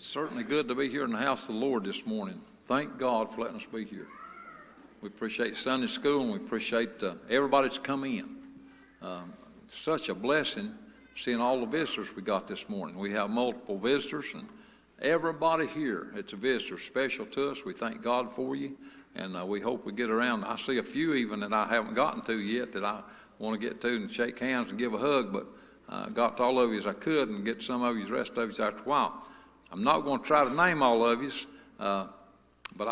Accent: American